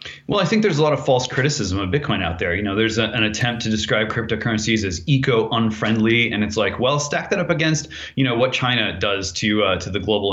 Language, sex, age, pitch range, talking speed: English, male, 30-49, 95-125 Hz, 250 wpm